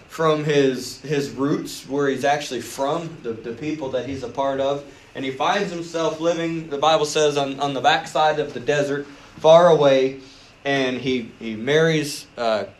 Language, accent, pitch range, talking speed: English, American, 130-155 Hz, 175 wpm